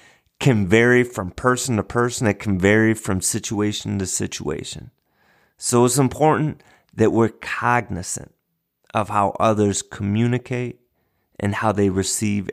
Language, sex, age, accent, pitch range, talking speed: English, male, 30-49, American, 100-130 Hz, 130 wpm